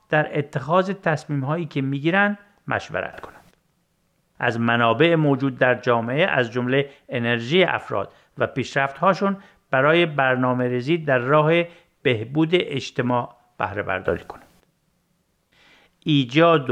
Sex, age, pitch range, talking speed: male, 50-69, 125-170 Hz, 95 wpm